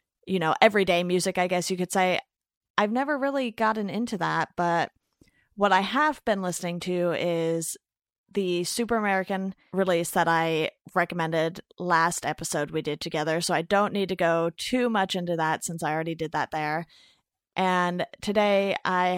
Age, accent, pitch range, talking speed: 30-49, American, 170-205 Hz, 170 wpm